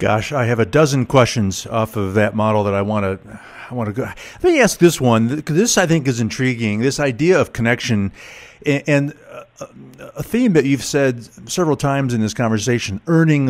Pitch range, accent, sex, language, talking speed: 105-155 Hz, American, male, English, 190 wpm